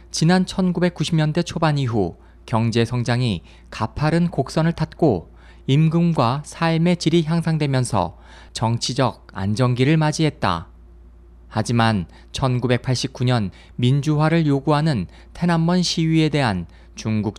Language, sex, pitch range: Korean, male, 100-155 Hz